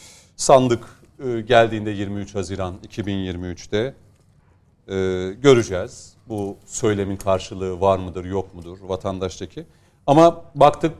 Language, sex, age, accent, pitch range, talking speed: Turkish, male, 40-59, native, 100-140 Hz, 85 wpm